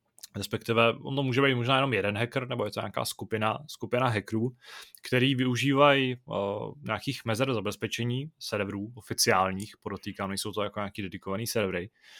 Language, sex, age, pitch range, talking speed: Czech, male, 20-39, 100-125 Hz, 155 wpm